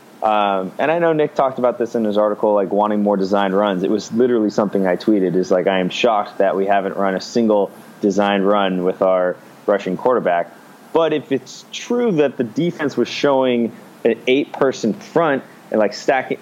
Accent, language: American, English